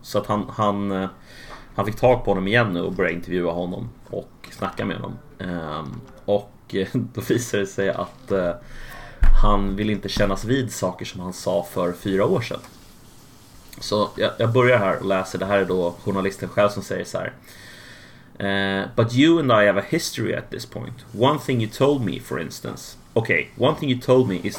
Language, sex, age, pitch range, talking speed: Swedish, male, 30-49, 95-120 Hz, 200 wpm